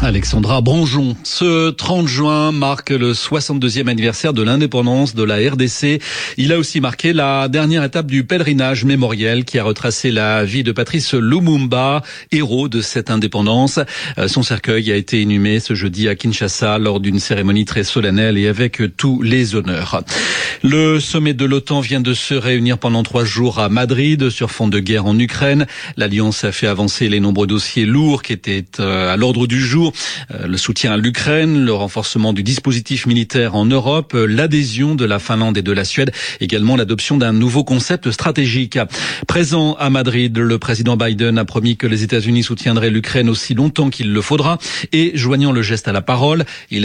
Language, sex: French, male